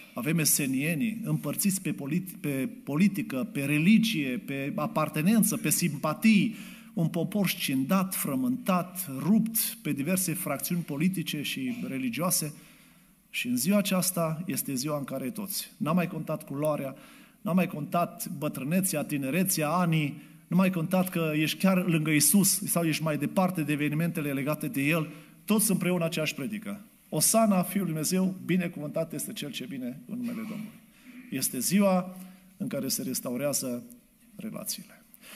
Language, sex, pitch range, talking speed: Romanian, male, 155-220 Hz, 140 wpm